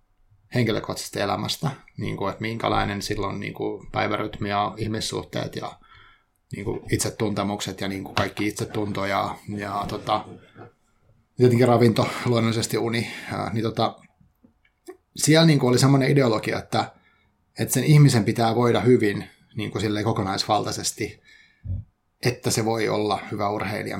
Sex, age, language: male, 30-49, Finnish